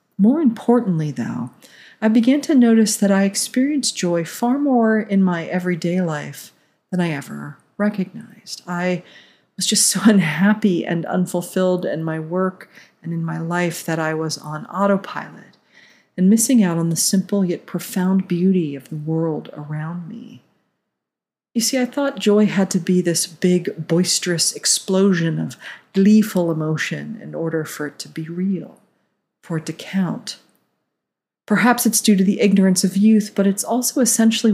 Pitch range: 170-220 Hz